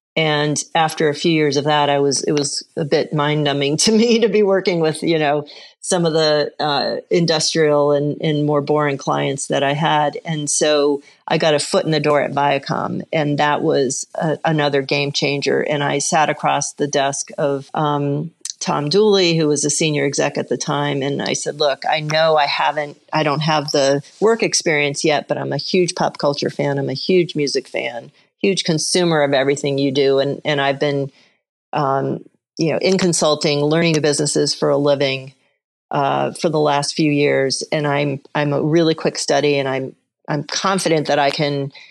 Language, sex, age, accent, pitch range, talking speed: English, female, 40-59, American, 145-165 Hz, 200 wpm